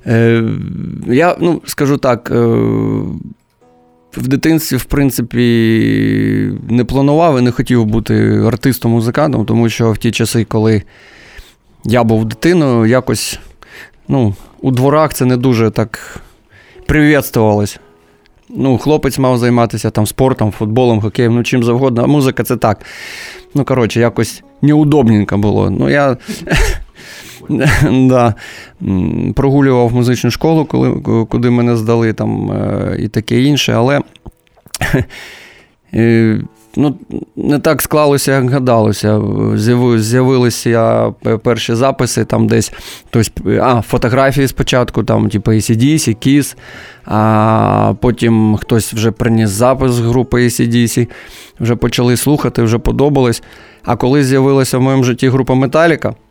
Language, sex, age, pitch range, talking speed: Ukrainian, male, 20-39, 110-130 Hz, 120 wpm